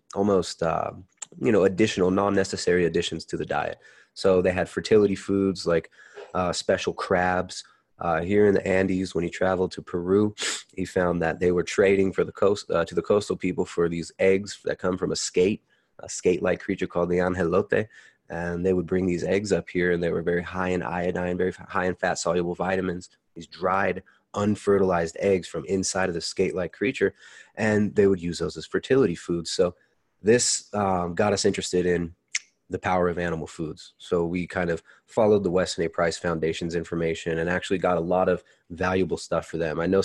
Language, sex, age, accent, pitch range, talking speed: English, male, 20-39, American, 85-95 Hz, 195 wpm